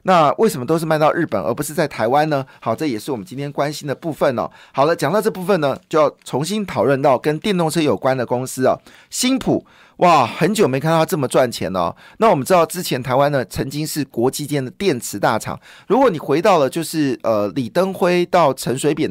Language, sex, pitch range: Chinese, male, 130-180 Hz